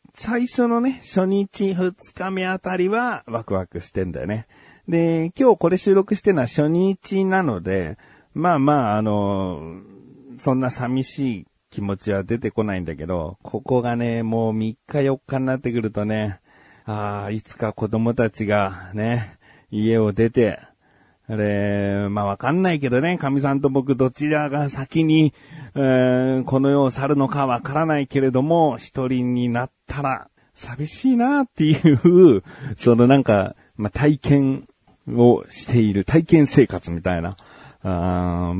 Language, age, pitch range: Japanese, 40-59, 100-140 Hz